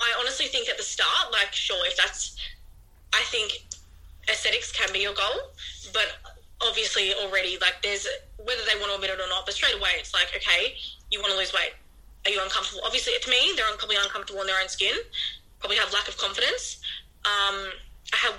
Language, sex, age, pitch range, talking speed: English, female, 20-39, 190-235 Hz, 200 wpm